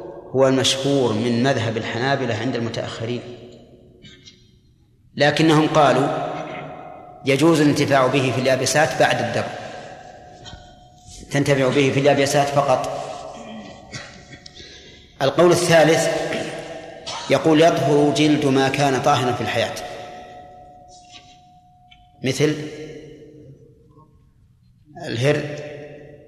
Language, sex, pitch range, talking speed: Arabic, male, 125-150 Hz, 75 wpm